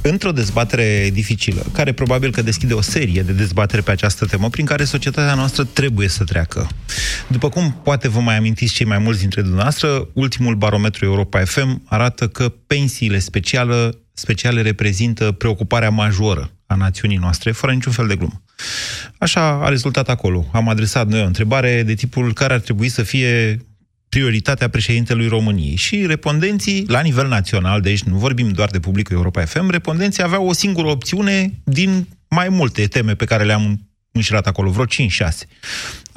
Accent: native